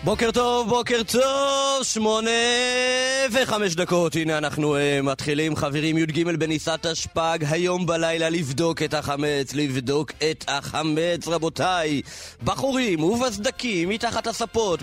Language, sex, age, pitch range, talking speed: Hebrew, male, 30-49, 140-200 Hz, 110 wpm